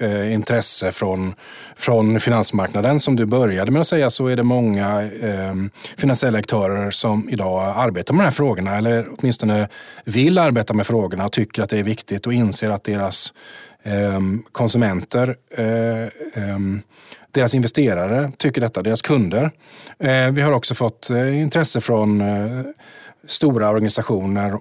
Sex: male